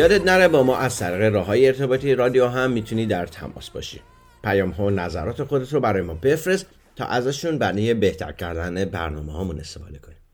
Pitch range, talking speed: 90-125 Hz, 190 wpm